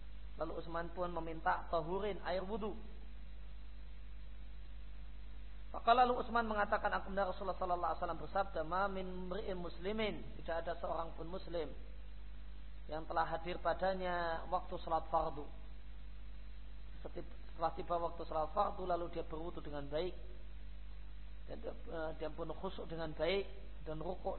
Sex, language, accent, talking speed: male, Indonesian, native, 115 wpm